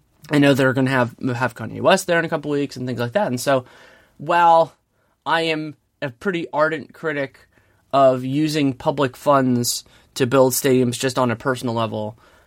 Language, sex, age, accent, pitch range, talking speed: English, male, 20-39, American, 120-155 Hz, 190 wpm